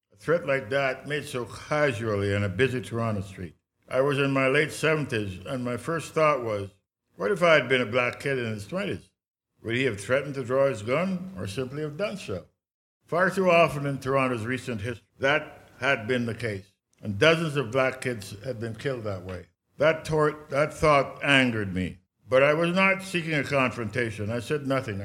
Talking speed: 205 wpm